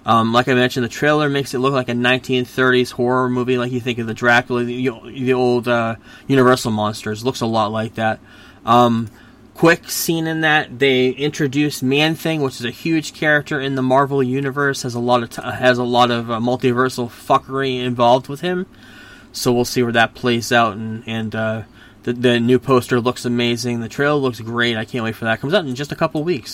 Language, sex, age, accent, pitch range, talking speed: English, male, 20-39, American, 115-135 Hz, 220 wpm